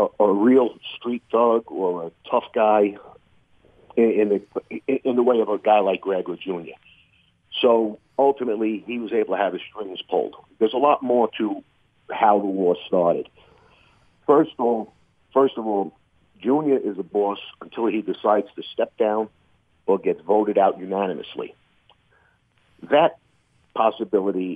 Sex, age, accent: male, 50-69, American